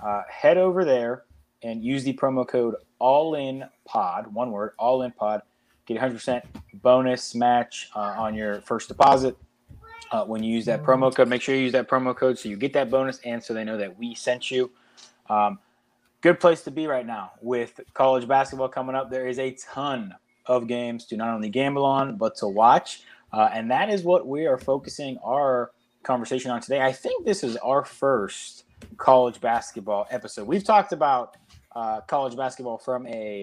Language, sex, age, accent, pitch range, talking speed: English, male, 20-39, American, 115-135 Hz, 195 wpm